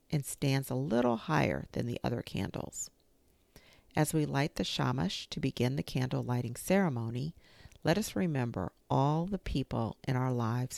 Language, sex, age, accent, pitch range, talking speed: English, female, 50-69, American, 125-160 Hz, 160 wpm